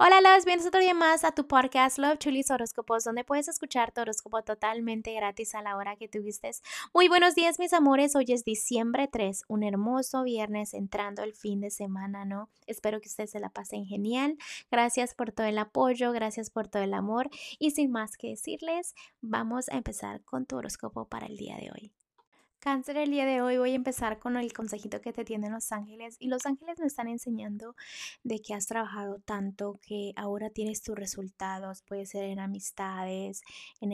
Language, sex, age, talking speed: Spanish, female, 20-39, 200 wpm